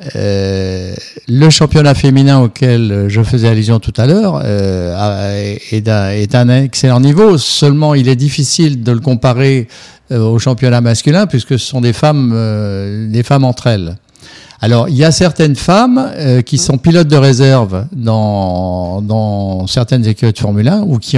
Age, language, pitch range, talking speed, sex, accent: 60-79, French, 105-130 Hz, 170 wpm, male, French